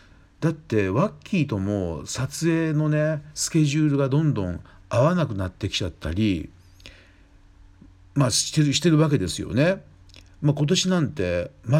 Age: 50-69